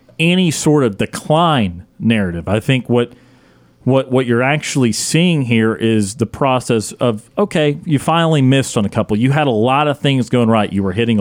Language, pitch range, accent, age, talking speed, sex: English, 120-150 Hz, American, 40-59, 195 wpm, male